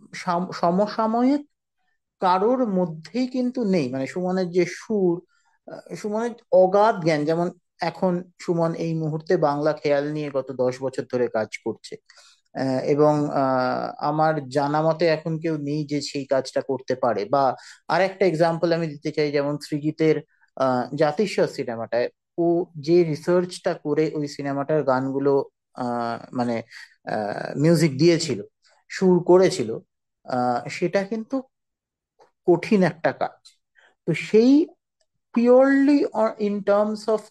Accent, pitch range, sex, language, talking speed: native, 145-200 Hz, male, Bengali, 105 wpm